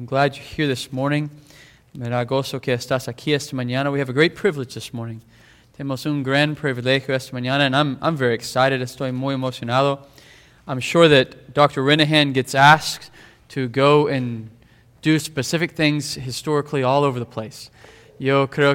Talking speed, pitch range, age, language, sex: 160 wpm, 125-145 Hz, 20-39, English, male